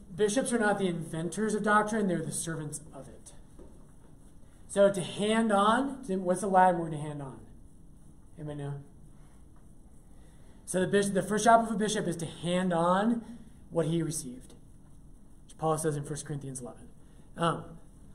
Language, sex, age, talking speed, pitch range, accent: English, male, 30-49, 155 wpm, 160-205 Hz, American